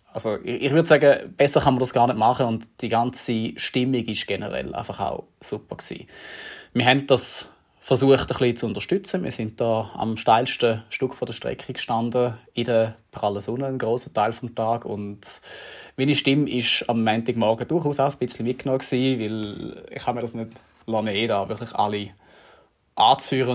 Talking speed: 180 wpm